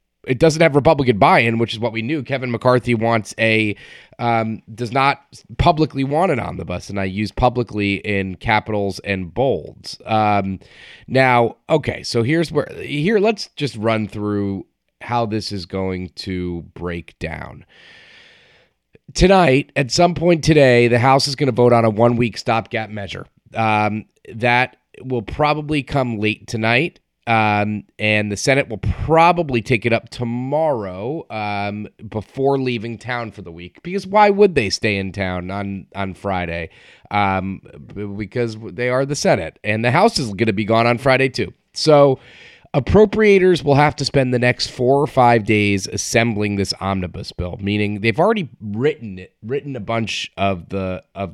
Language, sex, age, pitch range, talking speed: English, male, 30-49, 100-130 Hz, 165 wpm